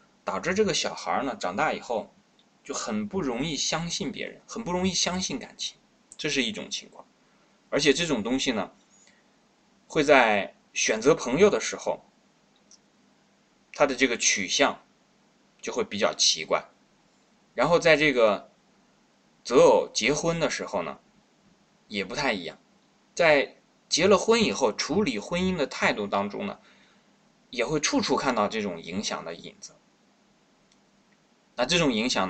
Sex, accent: male, native